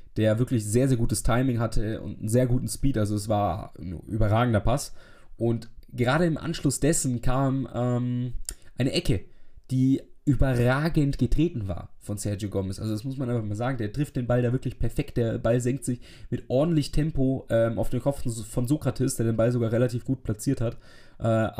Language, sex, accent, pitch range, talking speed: German, male, German, 110-130 Hz, 195 wpm